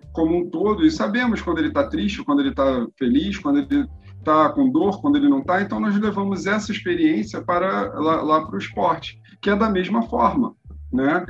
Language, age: English, 40-59